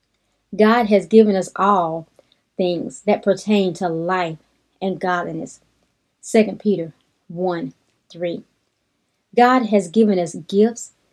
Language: English